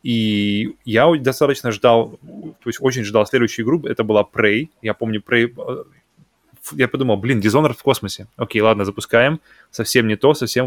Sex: male